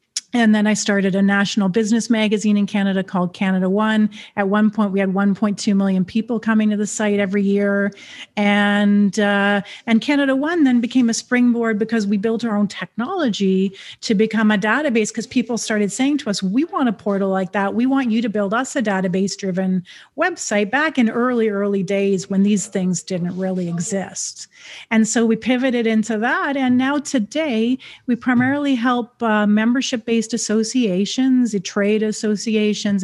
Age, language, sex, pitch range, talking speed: 40-59, English, female, 195-235 Hz, 175 wpm